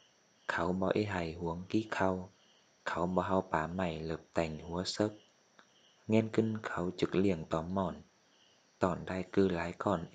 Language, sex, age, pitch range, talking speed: Vietnamese, male, 20-39, 85-105 Hz, 170 wpm